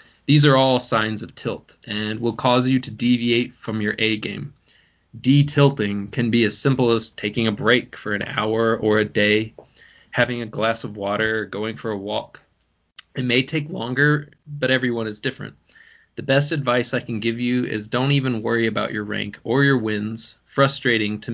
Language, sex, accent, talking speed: English, male, American, 190 wpm